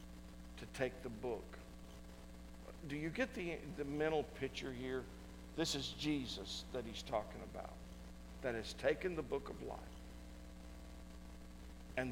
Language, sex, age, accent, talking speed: English, male, 50-69, American, 135 wpm